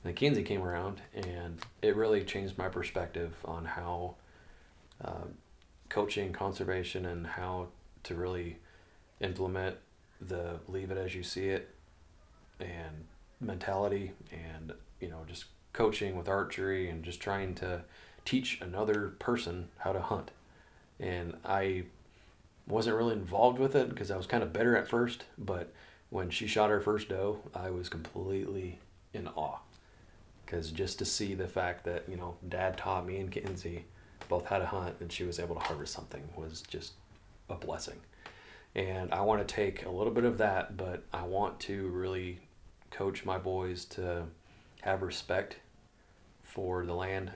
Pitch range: 85-100 Hz